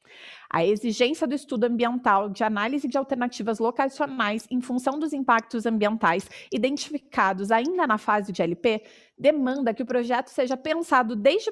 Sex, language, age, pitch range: female, Portuguese, 30-49, 215-275 Hz